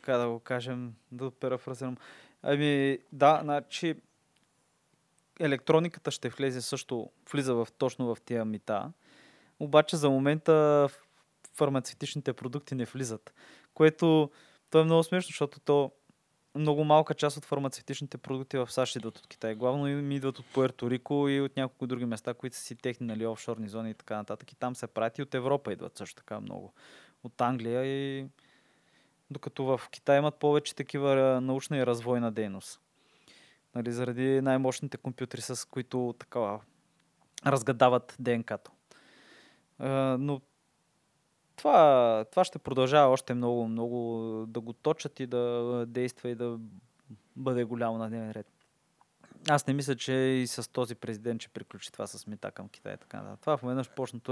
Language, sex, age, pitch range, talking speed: Bulgarian, male, 20-39, 120-145 Hz, 150 wpm